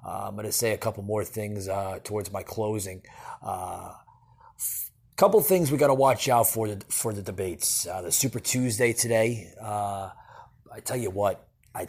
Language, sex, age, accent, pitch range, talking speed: English, male, 30-49, American, 110-135 Hz, 180 wpm